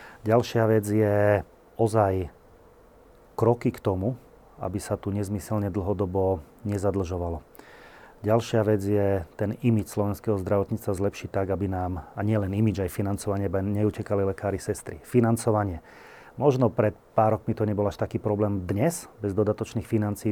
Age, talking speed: 30-49, 135 wpm